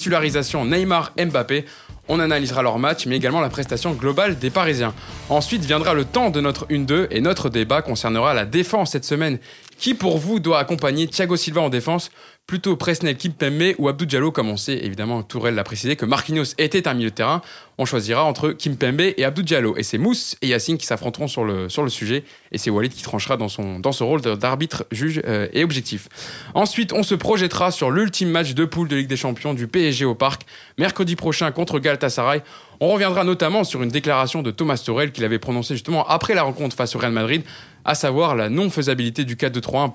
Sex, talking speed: male, 210 wpm